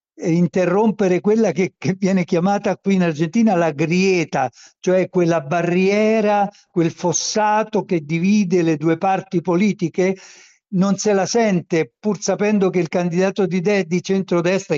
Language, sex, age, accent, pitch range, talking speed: Italian, male, 60-79, native, 160-195 Hz, 140 wpm